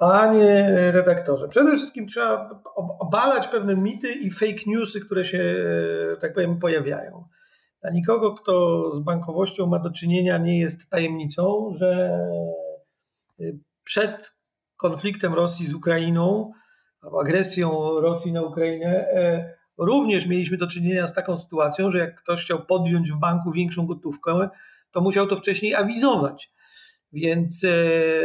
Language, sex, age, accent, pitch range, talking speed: Polish, male, 40-59, native, 170-200 Hz, 125 wpm